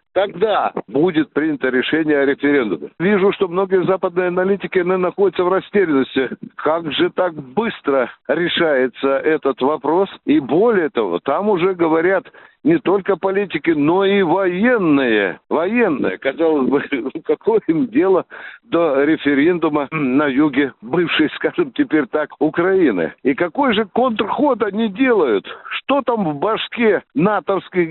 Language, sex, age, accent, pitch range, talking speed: Russian, male, 60-79, native, 165-230 Hz, 125 wpm